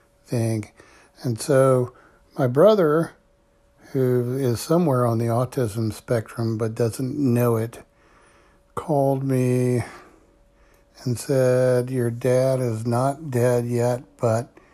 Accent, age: American, 60-79